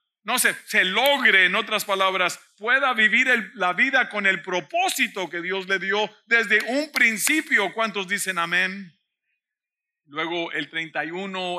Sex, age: male, 50-69